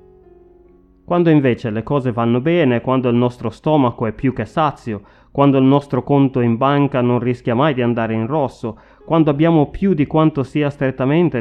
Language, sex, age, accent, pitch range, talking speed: Italian, male, 30-49, native, 115-145 Hz, 180 wpm